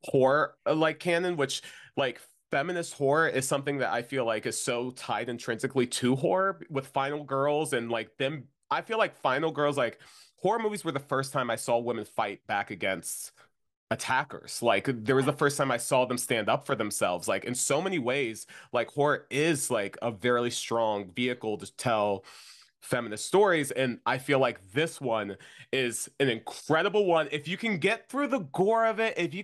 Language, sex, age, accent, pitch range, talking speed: English, male, 30-49, American, 120-155 Hz, 195 wpm